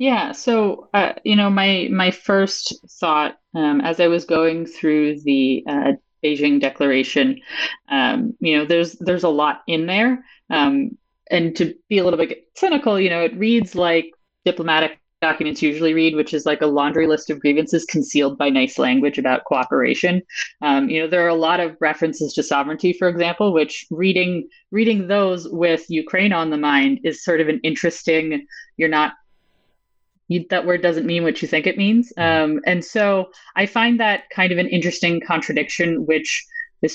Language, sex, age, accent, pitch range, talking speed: English, female, 30-49, American, 155-195 Hz, 180 wpm